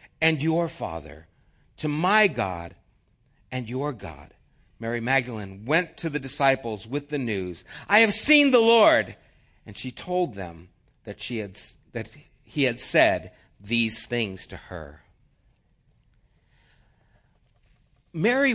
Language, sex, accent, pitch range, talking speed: English, male, American, 115-165 Hz, 125 wpm